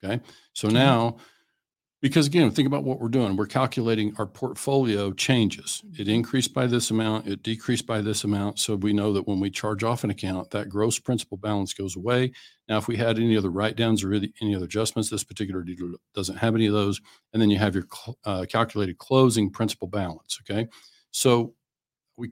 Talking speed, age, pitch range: 200 wpm, 50-69, 100-120 Hz